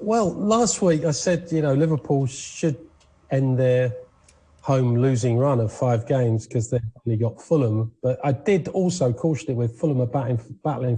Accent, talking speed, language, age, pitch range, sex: British, 180 wpm, English, 40-59, 120-160 Hz, male